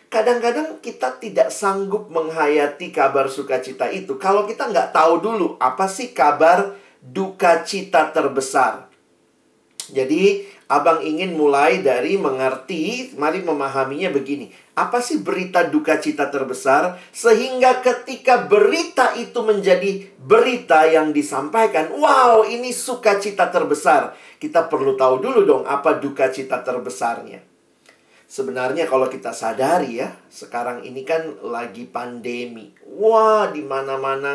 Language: Indonesian